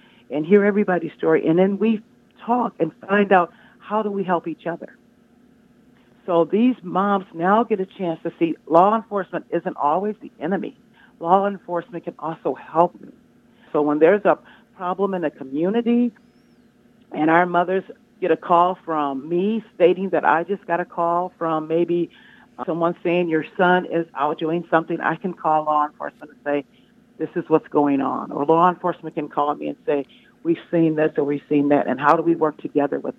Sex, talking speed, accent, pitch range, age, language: female, 190 wpm, American, 150-200 Hz, 50-69, English